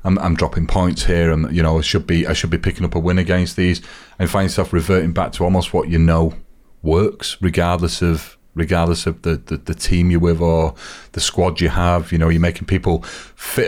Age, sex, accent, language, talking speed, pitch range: 30-49, male, British, English, 230 wpm, 80-100 Hz